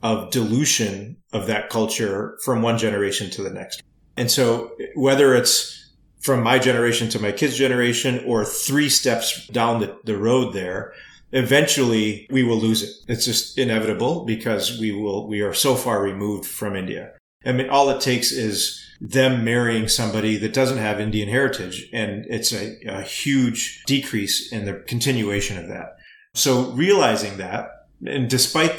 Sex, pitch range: male, 105-130 Hz